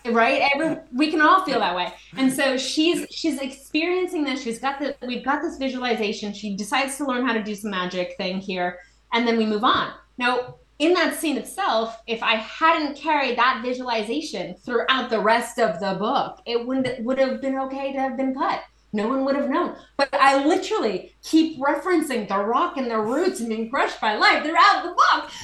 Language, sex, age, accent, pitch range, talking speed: English, female, 30-49, American, 190-270 Hz, 210 wpm